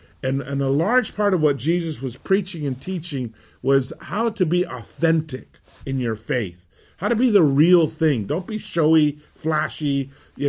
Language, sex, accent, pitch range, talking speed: English, male, American, 120-165 Hz, 175 wpm